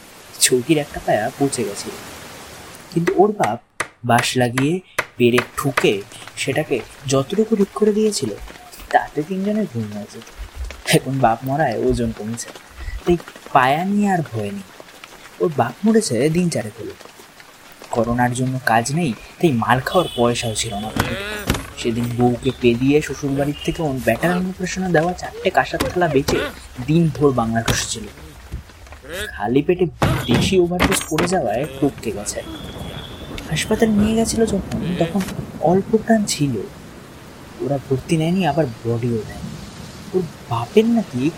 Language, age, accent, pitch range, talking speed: Hindi, 20-39, native, 115-175 Hz, 60 wpm